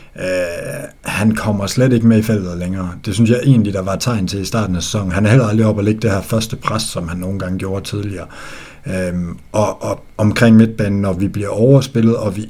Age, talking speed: 60-79, 235 wpm